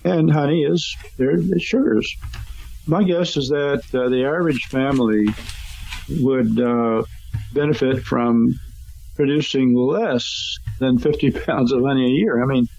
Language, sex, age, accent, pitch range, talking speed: English, male, 50-69, American, 110-145 Hz, 135 wpm